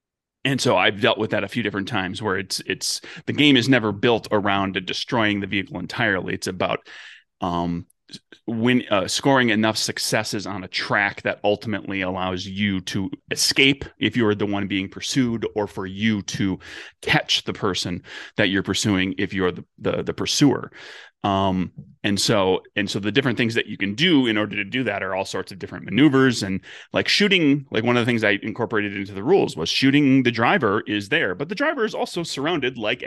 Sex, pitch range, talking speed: male, 105-135 Hz, 205 wpm